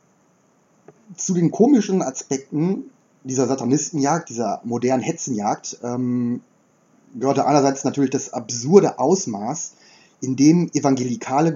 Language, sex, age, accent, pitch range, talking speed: German, male, 30-49, German, 125-155 Hz, 100 wpm